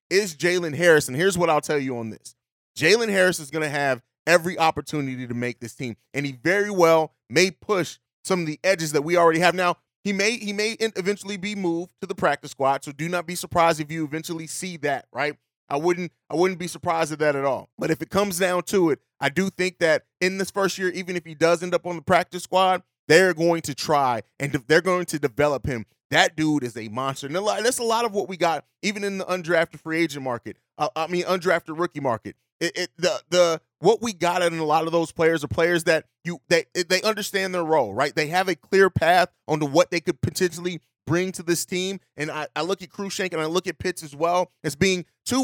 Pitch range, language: 150-185 Hz, English